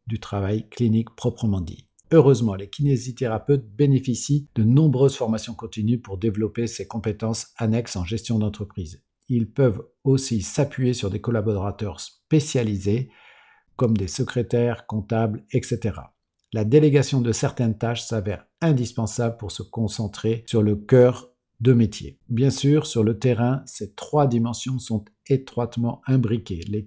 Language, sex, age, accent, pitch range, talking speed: French, male, 50-69, French, 110-130 Hz, 135 wpm